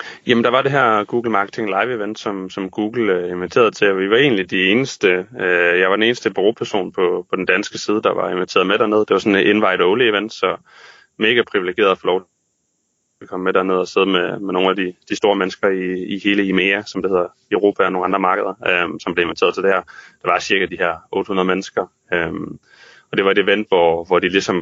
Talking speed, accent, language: 240 wpm, native, Danish